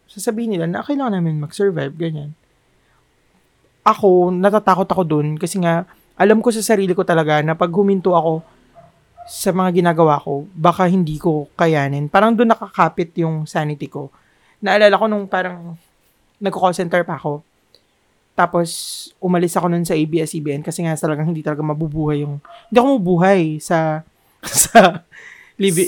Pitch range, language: 165-210 Hz, Filipino